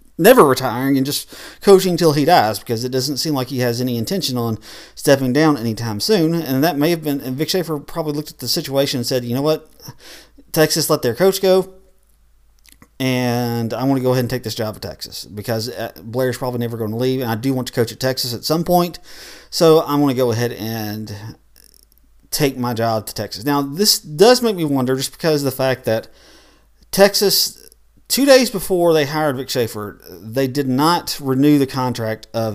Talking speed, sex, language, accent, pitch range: 210 wpm, male, English, American, 120-155 Hz